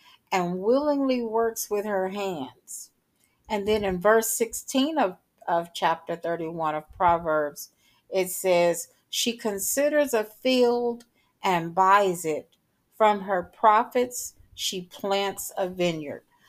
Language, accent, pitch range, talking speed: English, American, 180-225 Hz, 120 wpm